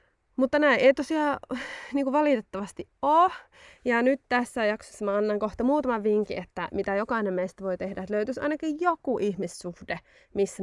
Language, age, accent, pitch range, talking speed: Finnish, 20-39, native, 195-265 Hz, 160 wpm